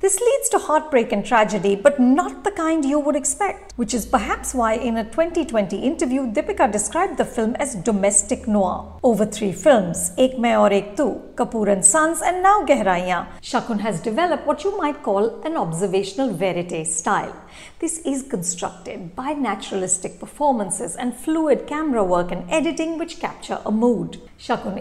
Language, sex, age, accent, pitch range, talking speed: English, female, 50-69, Indian, 205-295 Hz, 170 wpm